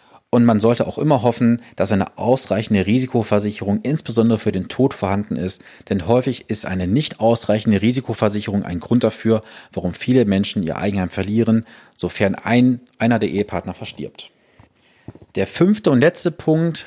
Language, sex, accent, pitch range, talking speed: German, male, German, 105-130 Hz, 150 wpm